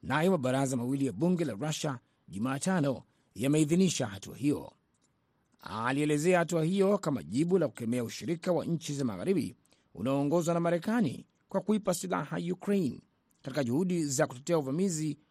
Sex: male